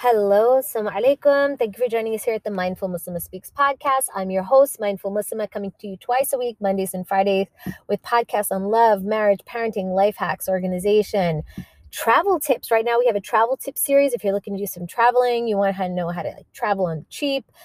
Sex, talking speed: female, 220 wpm